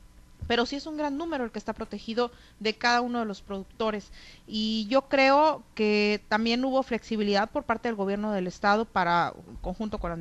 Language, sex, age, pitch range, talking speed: Spanish, female, 40-59, 200-240 Hz, 195 wpm